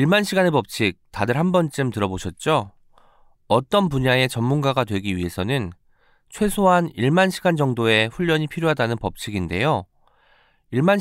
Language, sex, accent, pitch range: Korean, male, native, 115-165 Hz